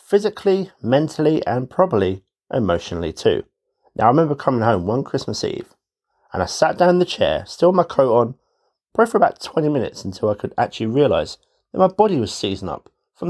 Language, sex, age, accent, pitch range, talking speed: English, male, 30-49, British, 120-190 Hz, 195 wpm